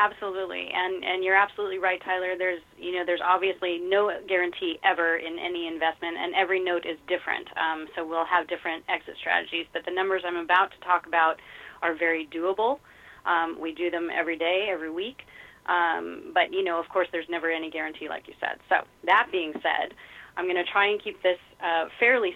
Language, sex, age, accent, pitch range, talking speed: English, female, 30-49, American, 165-195 Hz, 200 wpm